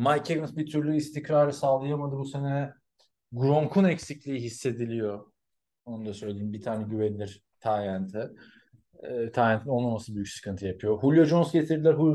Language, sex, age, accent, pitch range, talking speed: Turkish, male, 40-59, native, 100-130 Hz, 135 wpm